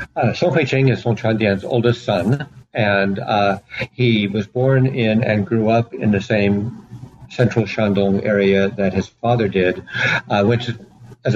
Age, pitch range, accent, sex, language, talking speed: 60-79, 100-125 Hz, American, male, English, 175 wpm